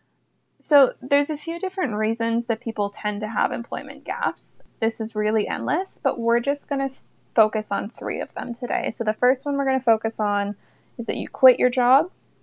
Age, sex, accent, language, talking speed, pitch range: 20-39, female, American, English, 210 wpm, 210-265 Hz